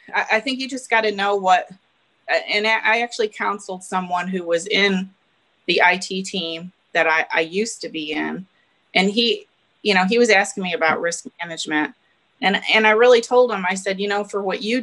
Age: 30-49